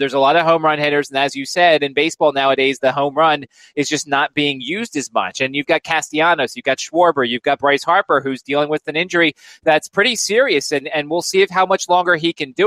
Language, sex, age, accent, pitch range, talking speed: English, male, 30-49, American, 140-175 Hz, 255 wpm